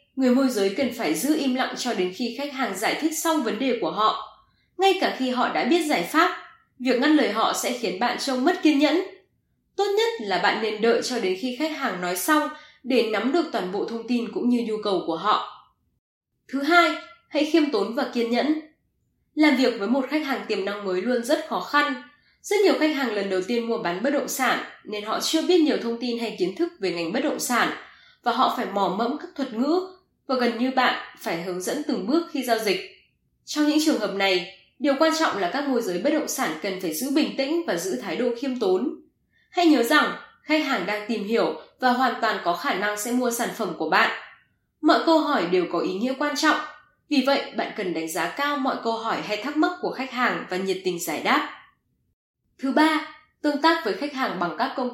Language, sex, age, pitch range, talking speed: Vietnamese, female, 10-29, 230-315 Hz, 240 wpm